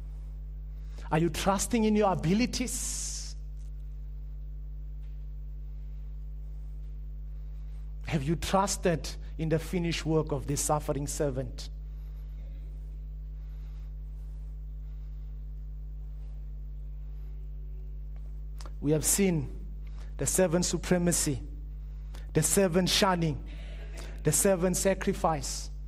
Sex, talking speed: male, 65 wpm